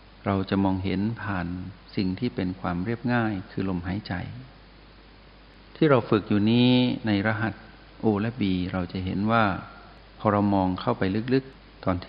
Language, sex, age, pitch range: Thai, male, 60-79, 95-110 Hz